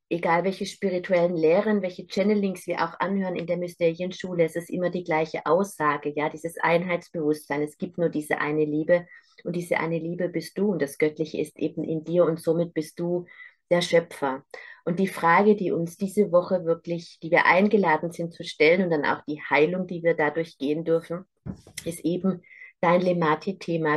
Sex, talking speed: female, 185 wpm